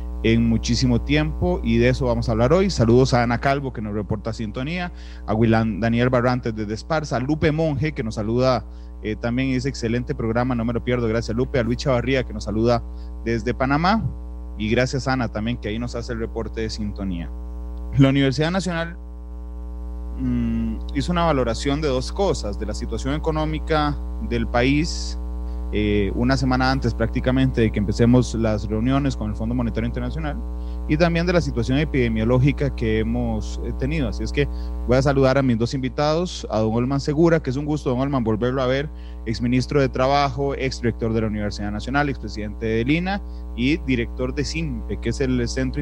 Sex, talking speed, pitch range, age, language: male, 190 wpm, 110-135 Hz, 30-49, Spanish